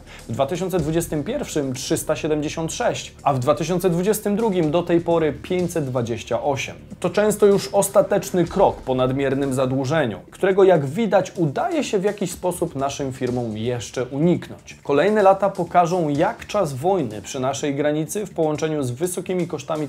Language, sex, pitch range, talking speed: Polish, male, 140-180 Hz, 135 wpm